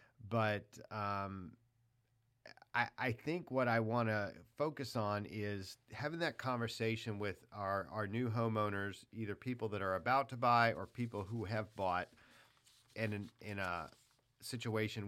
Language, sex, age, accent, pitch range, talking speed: English, male, 40-59, American, 100-120 Hz, 145 wpm